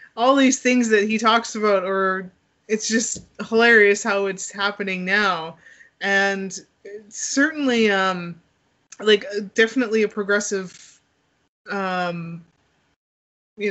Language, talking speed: English, 110 wpm